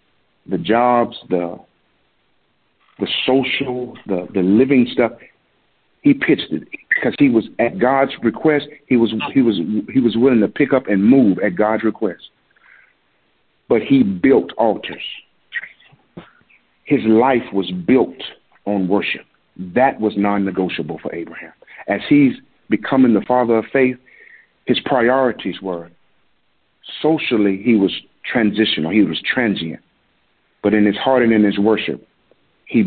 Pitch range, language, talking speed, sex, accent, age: 100-130 Hz, English, 135 wpm, male, American, 50-69